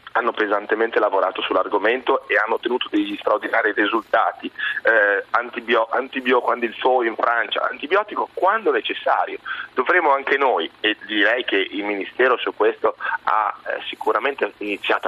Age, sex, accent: 30-49, male, native